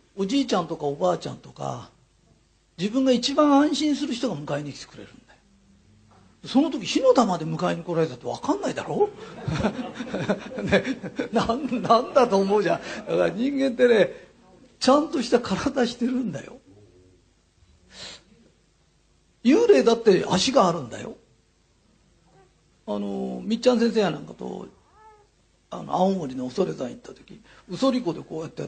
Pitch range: 150-245 Hz